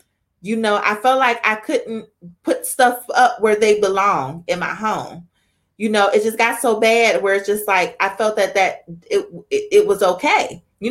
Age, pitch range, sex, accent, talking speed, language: 30-49, 195-255 Hz, female, American, 205 wpm, English